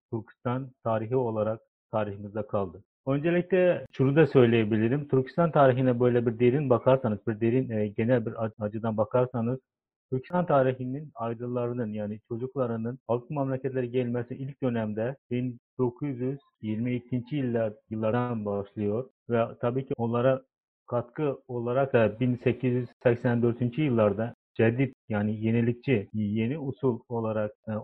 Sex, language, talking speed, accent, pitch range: male, Turkish, 110 wpm, native, 115-130 Hz